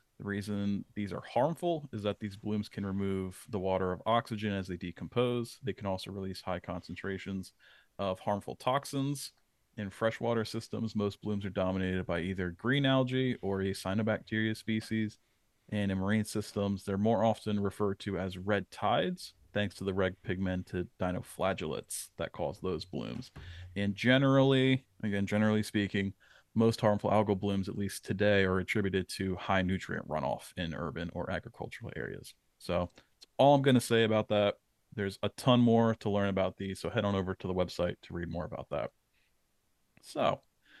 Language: English